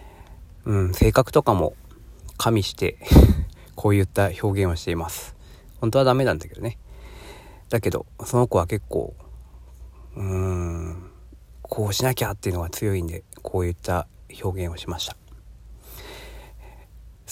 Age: 40-59